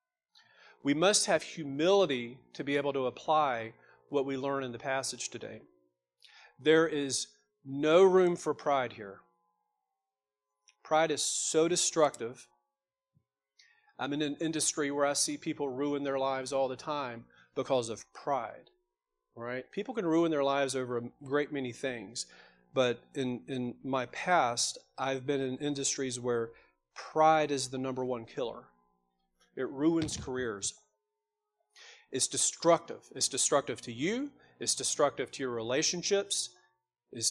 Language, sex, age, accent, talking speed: English, male, 40-59, American, 135 wpm